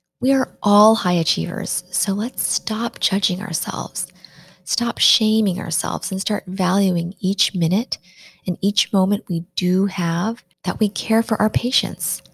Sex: female